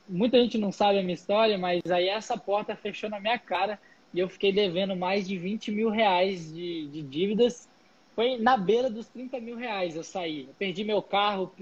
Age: 20-39